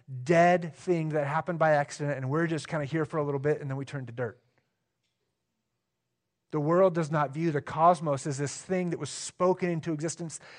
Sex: male